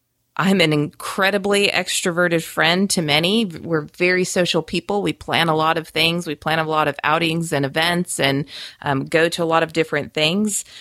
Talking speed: 190 wpm